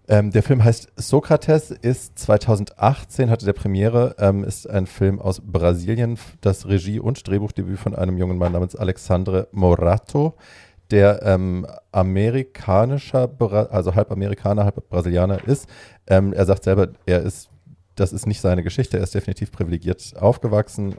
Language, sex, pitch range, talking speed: German, male, 95-110 Hz, 150 wpm